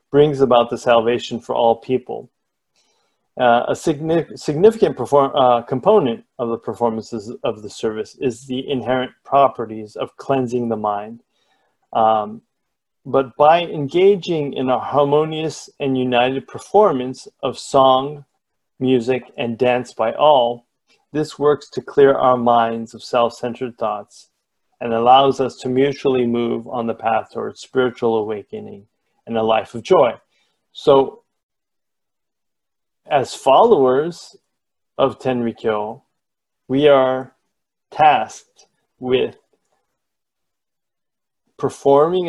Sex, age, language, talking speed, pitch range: male, 40-59, English, 115 wpm, 120-145 Hz